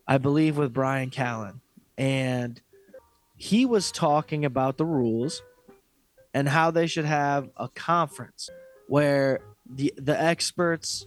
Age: 20-39